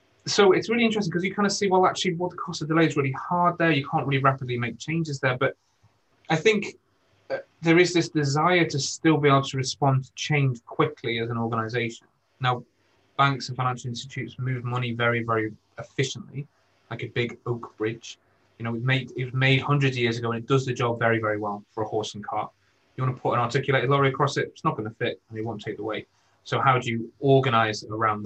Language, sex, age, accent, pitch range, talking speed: English, male, 30-49, British, 110-140 Hz, 240 wpm